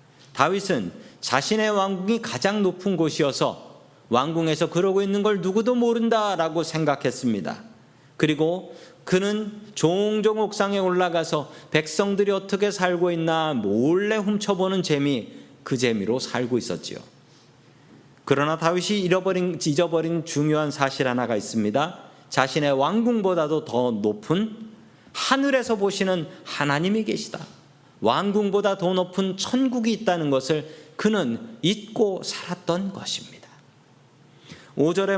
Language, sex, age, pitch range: Korean, male, 40-59, 140-200 Hz